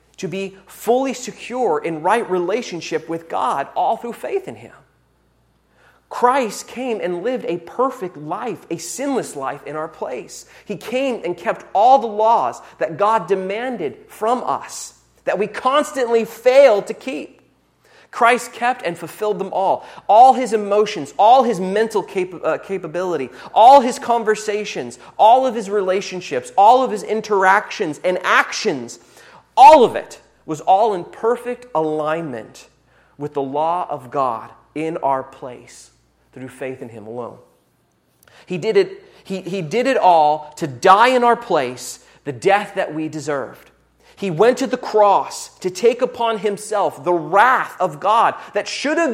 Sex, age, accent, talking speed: male, 30-49, American, 155 wpm